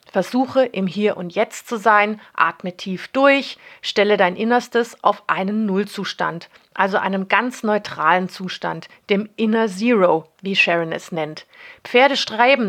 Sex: female